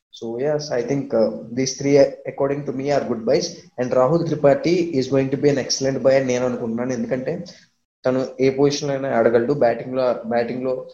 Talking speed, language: 250 wpm, Telugu